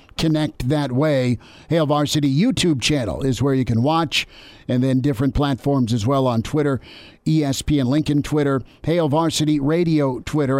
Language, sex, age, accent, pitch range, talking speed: English, male, 50-69, American, 130-155 Hz, 155 wpm